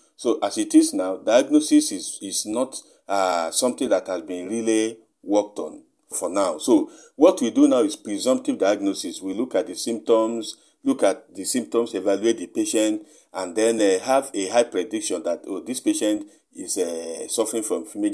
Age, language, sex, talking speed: 50-69, English, male, 180 wpm